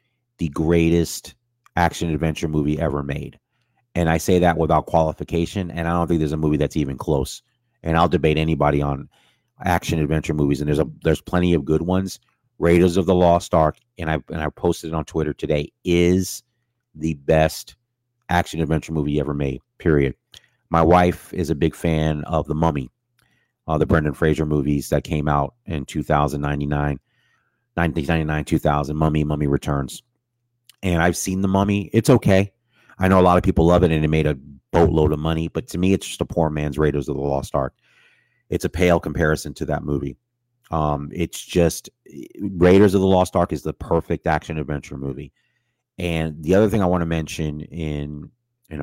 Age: 30-49